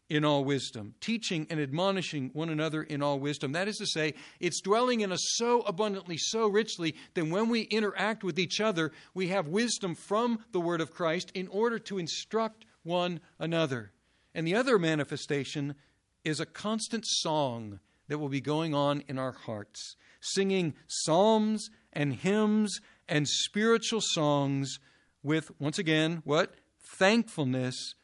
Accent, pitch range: American, 145-180 Hz